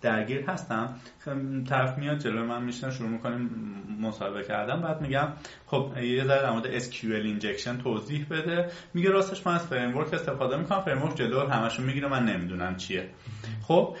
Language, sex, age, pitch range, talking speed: Persian, male, 30-49, 120-170 Hz, 155 wpm